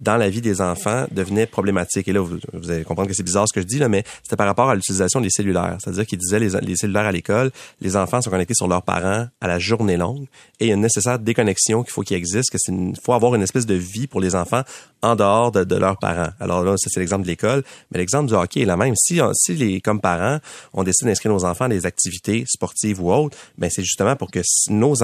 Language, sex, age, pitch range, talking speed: French, male, 30-49, 90-110 Hz, 270 wpm